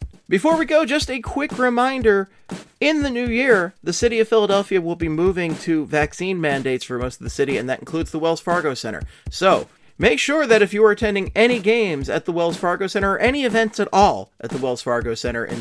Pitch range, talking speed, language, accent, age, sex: 140-230 Hz, 225 wpm, English, American, 30-49, male